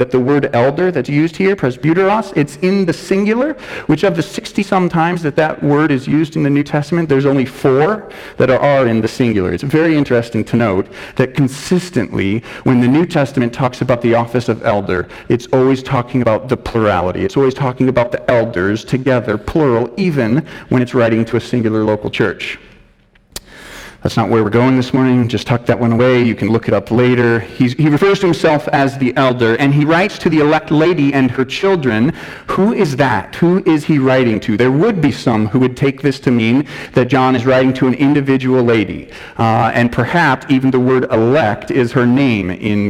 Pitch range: 125-160 Hz